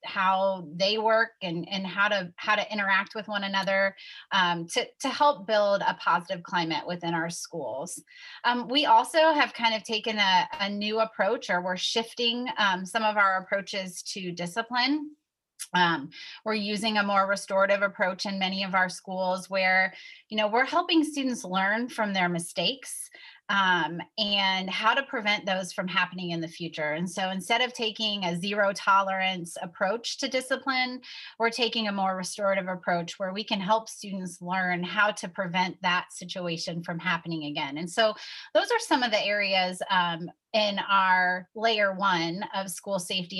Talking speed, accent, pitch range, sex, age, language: 175 wpm, American, 180-225 Hz, female, 30-49, English